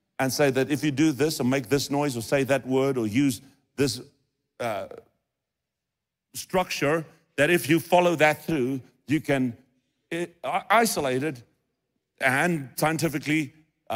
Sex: male